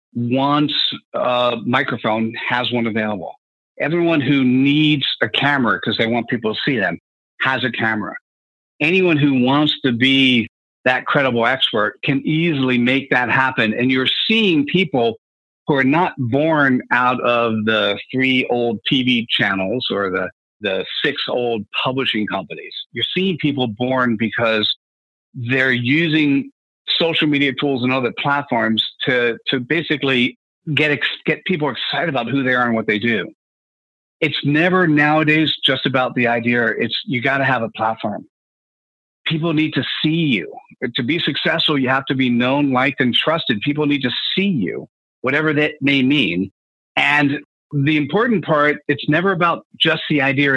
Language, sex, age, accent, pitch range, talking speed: English, male, 50-69, American, 120-150 Hz, 160 wpm